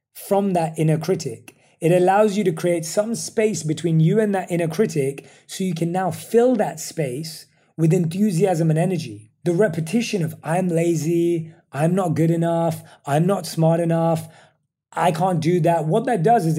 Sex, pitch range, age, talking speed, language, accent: male, 150-195 Hz, 30-49, 175 wpm, English, British